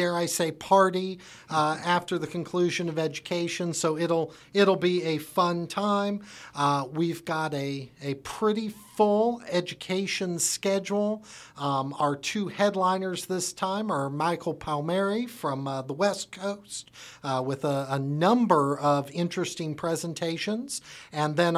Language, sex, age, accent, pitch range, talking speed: English, male, 50-69, American, 150-190 Hz, 140 wpm